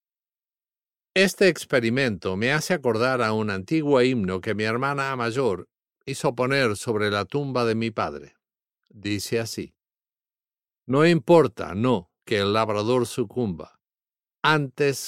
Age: 50-69